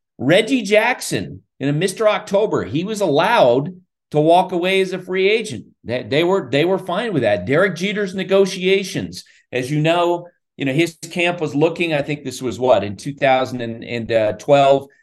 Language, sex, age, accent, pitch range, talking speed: English, male, 40-59, American, 135-175 Hz, 170 wpm